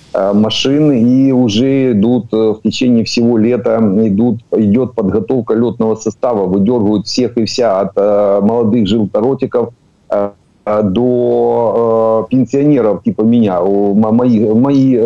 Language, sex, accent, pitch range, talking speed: Ukrainian, male, native, 105-120 Hz, 105 wpm